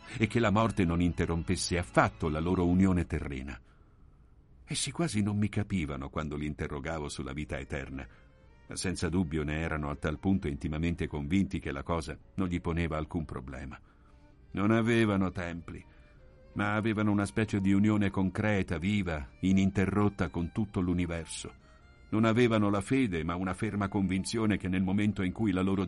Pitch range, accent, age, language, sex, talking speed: 80-105 Hz, native, 50-69, Italian, male, 160 wpm